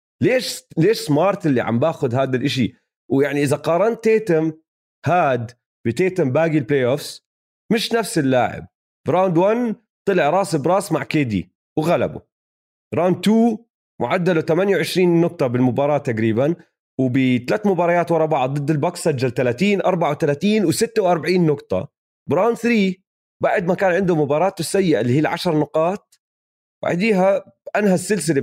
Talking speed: 135 wpm